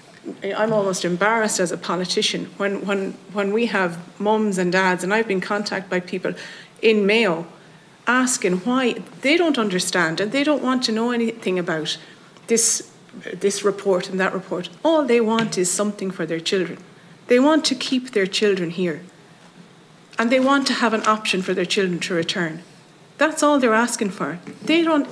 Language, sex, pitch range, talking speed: English, female, 180-245 Hz, 180 wpm